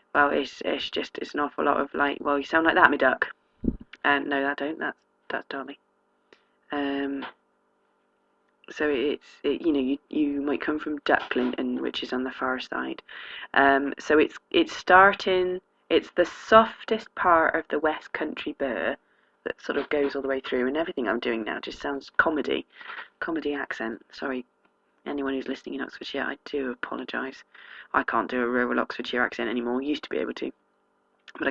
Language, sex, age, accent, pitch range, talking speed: English, female, 20-39, British, 135-170 Hz, 185 wpm